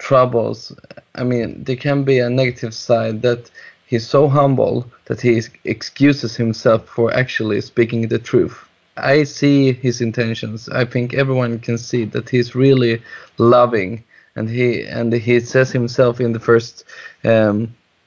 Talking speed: 150 wpm